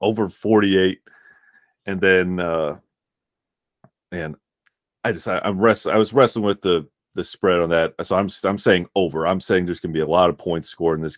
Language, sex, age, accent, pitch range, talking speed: English, male, 30-49, American, 85-105 Hz, 200 wpm